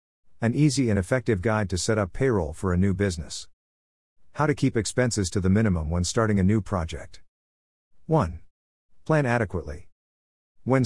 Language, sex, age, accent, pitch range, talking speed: English, male, 50-69, American, 90-110 Hz, 160 wpm